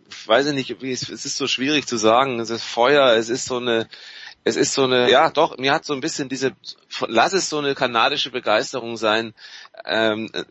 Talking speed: 225 wpm